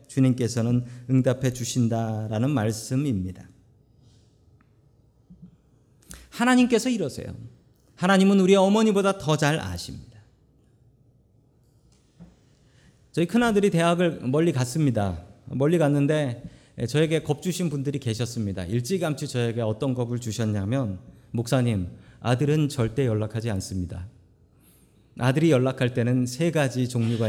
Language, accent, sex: Korean, native, male